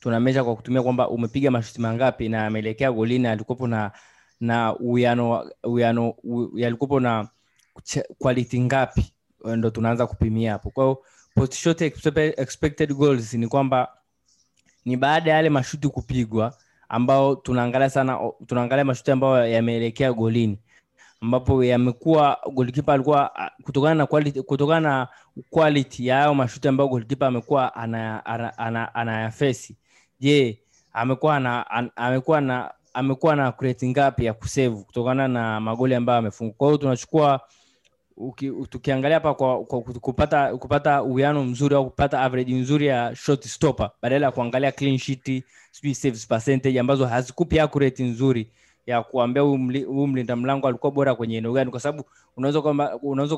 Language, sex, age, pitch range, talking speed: Swahili, male, 20-39, 120-140 Hz, 110 wpm